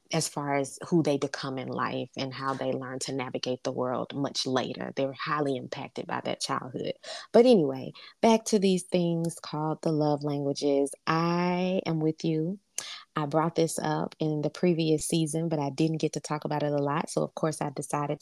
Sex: female